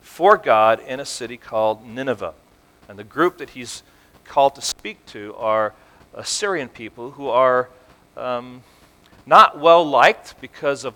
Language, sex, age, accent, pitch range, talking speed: English, male, 40-59, American, 125-170 Hz, 140 wpm